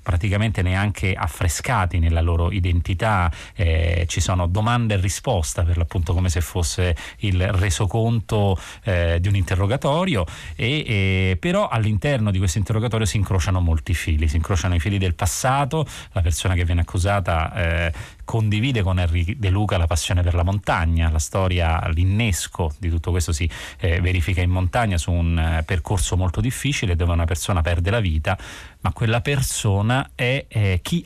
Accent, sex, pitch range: native, male, 85-110 Hz